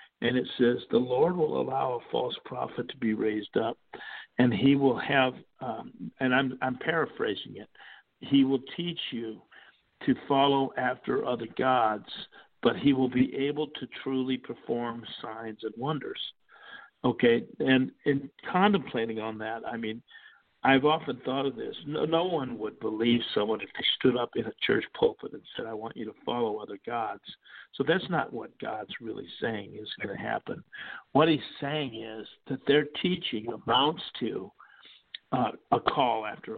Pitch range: 115-145 Hz